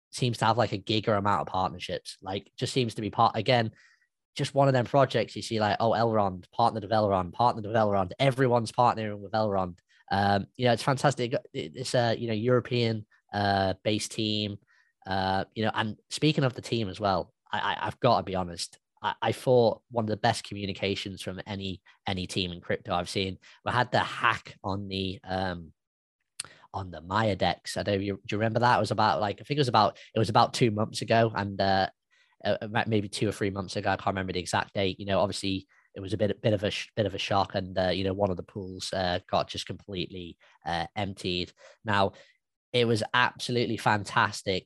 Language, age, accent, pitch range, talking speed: English, 10-29, British, 95-115 Hz, 225 wpm